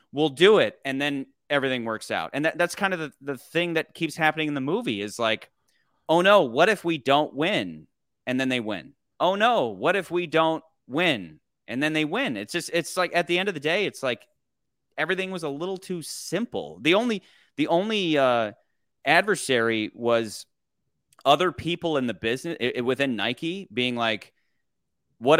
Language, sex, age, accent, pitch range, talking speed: English, male, 30-49, American, 120-165 Hz, 190 wpm